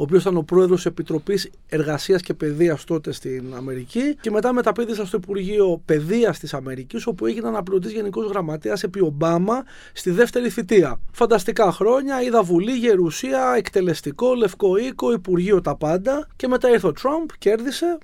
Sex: male